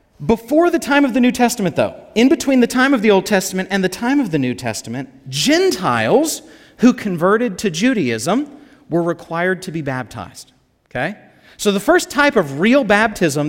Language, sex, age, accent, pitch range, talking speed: English, male, 30-49, American, 165-240 Hz, 180 wpm